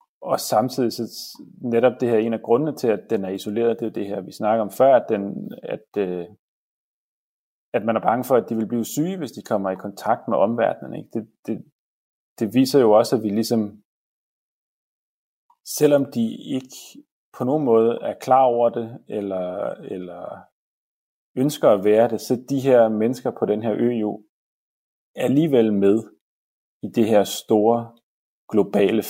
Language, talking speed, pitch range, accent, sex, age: Danish, 175 wpm, 105-125 Hz, native, male, 30-49